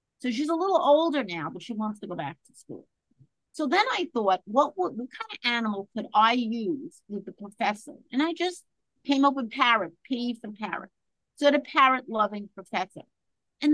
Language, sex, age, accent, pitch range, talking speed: English, female, 50-69, American, 190-255 Hz, 200 wpm